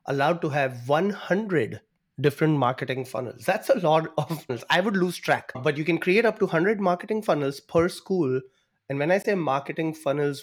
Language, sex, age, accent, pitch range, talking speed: English, male, 30-49, Indian, 135-175 Hz, 190 wpm